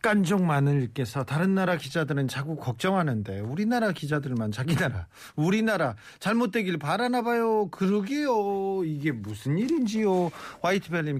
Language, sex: Korean, male